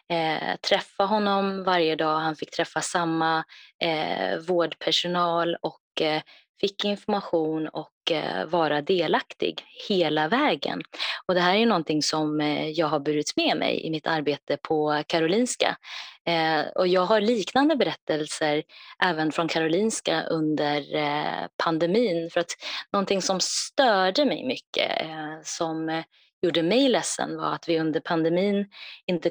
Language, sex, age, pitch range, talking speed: Swedish, female, 20-39, 155-190 Hz, 140 wpm